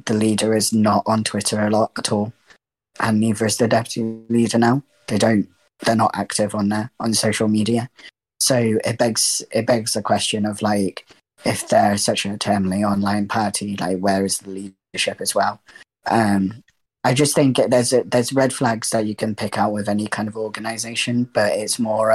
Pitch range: 100-115 Hz